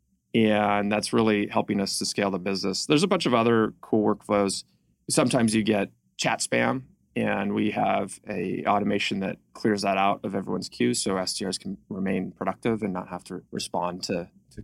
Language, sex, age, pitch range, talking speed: English, male, 20-39, 95-110 Hz, 185 wpm